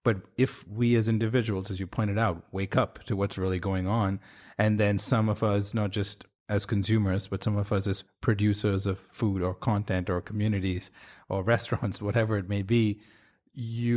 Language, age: English, 30-49